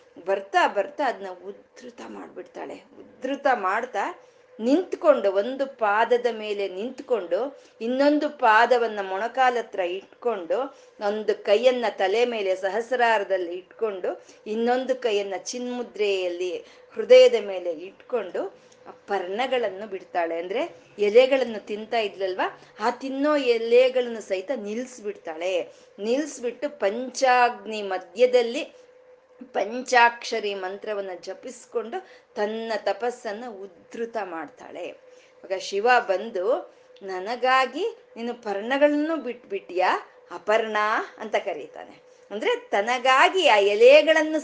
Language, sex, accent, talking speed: Kannada, female, native, 85 wpm